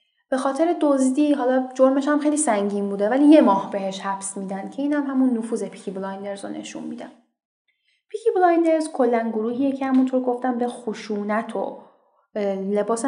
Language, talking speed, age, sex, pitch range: Persian, 165 wpm, 10-29, female, 200-255 Hz